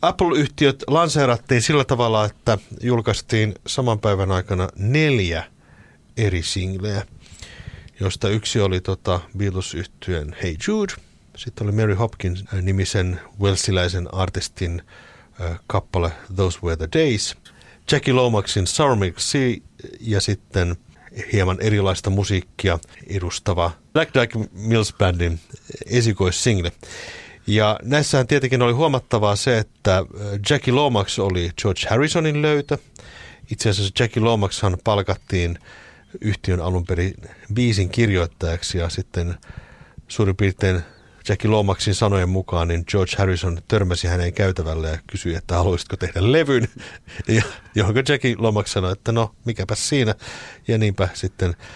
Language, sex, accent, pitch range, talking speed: Finnish, male, native, 90-115 Hz, 115 wpm